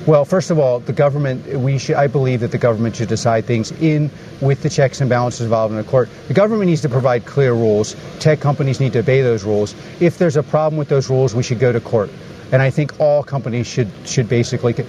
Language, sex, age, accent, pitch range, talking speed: English, male, 40-59, American, 120-155 Hz, 240 wpm